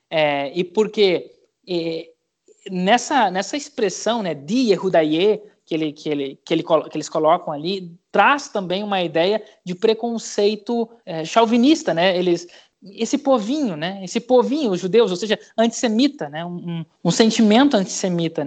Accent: Brazilian